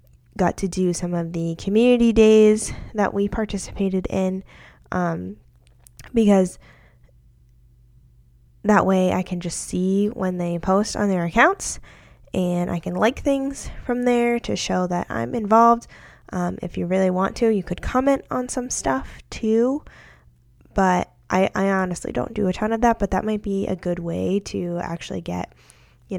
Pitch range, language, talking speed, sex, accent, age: 170-205 Hz, English, 165 wpm, female, American, 10-29